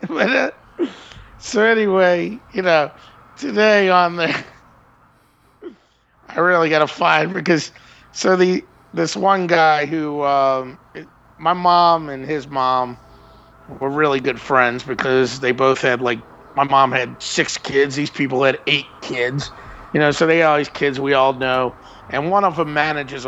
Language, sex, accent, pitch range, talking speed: English, male, American, 130-165 Hz, 155 wpm